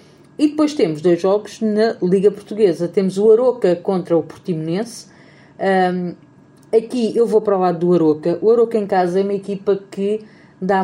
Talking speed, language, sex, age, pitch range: 175 wpm, Portuguese, female, 40-59, 180-225 Hz